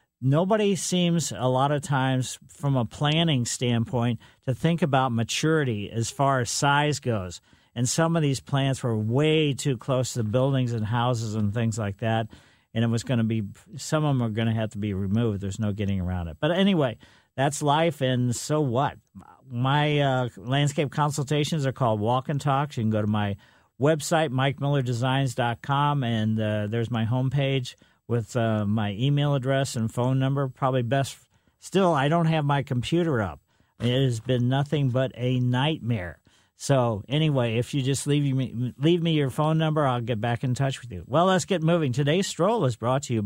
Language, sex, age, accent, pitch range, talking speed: English, male, 50-69, American, 115-150 Hz, 195 wpm